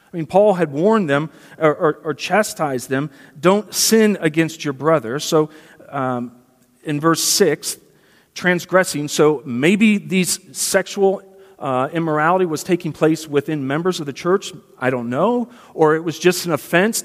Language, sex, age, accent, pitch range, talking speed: English, male, 40-59, American, 150-195 Hz, 160 wpm